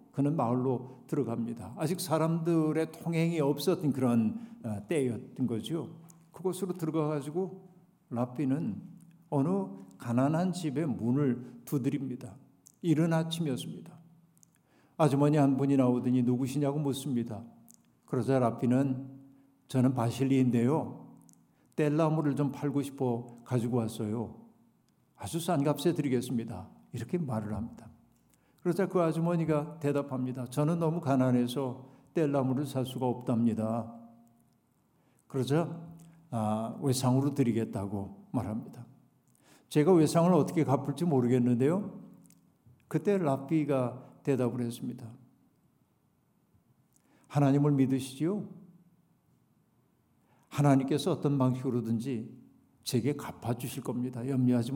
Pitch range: 125-160 Hz